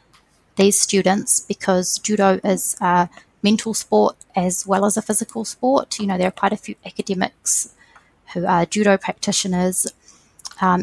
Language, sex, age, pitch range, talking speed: English, female, 20-39, 175-200 Hz, 150 wpm